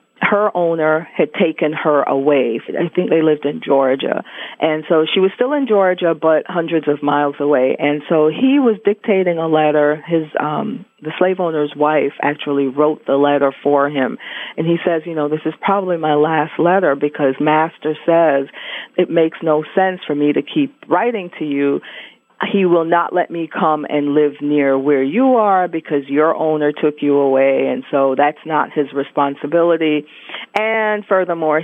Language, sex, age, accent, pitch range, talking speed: English, female, 40-59, American, 145-180 Hz, 180 wpm